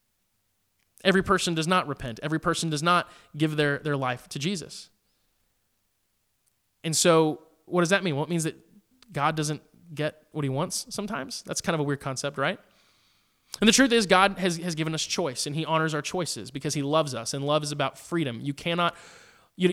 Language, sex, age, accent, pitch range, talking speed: English, male, 20-39, American, 145-190 Hz, 200 wpm